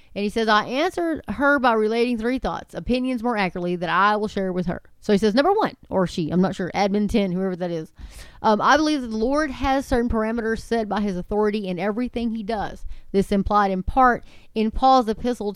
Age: 30-49